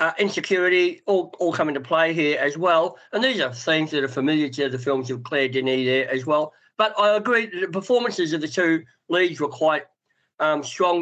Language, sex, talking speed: English, male, 220 wpm